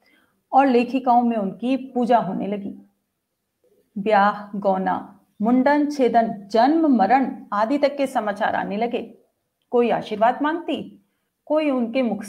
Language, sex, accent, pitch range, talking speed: Hindi, female, native, 210-270 Hz, 120 wpm